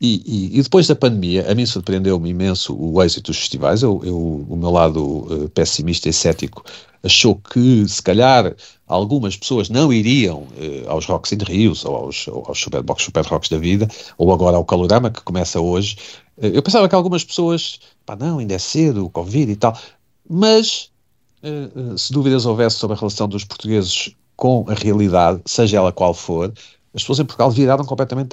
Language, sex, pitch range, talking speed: Portuguese, male, 95-125 Hz, 195 wpm